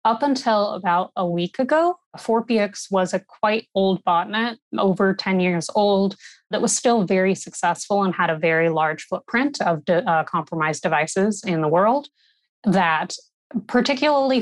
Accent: American